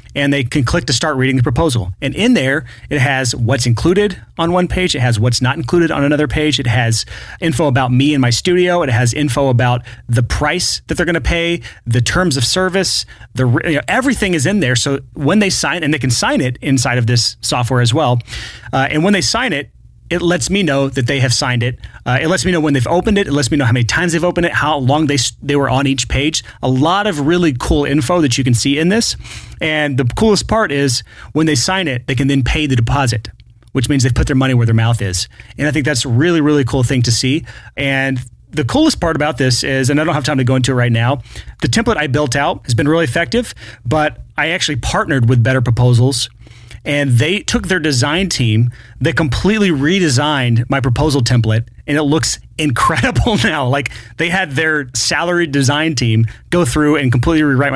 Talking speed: 230 wpm